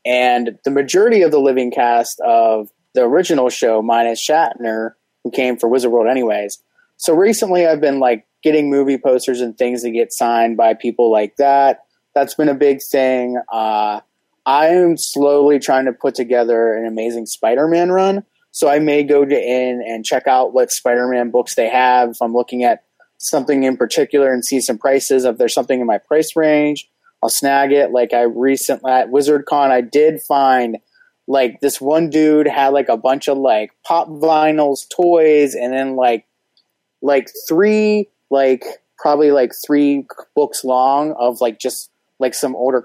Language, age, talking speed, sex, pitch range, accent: English, 20-39, 175 wpm, male, 120-150 Hz, American